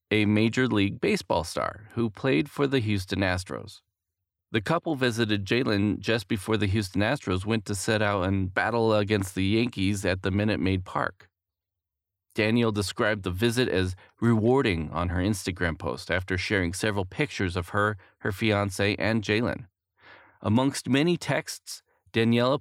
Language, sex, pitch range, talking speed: English, male, 95-115 Hz, 155 wpm